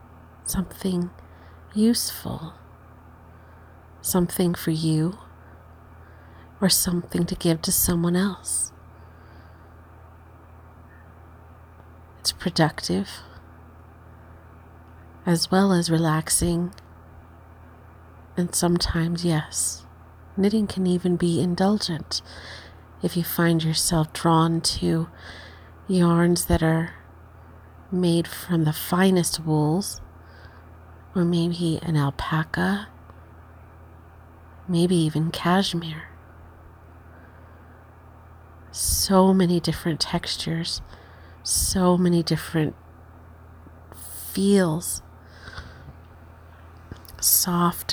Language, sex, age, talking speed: English, female, 40-59, 70 wpm